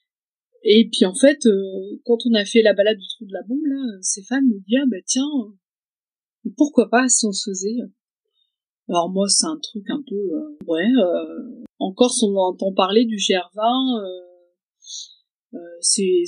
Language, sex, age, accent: French, female, 30-49, French